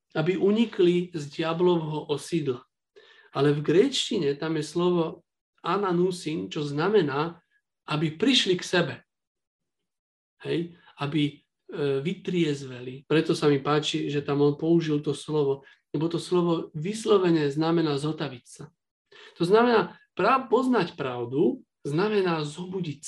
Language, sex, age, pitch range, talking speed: Slovak, male, 40-59, 140-175 Hz, 115 wpm